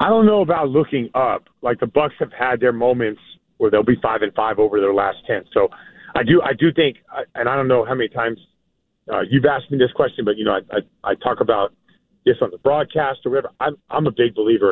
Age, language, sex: 40-59, English, male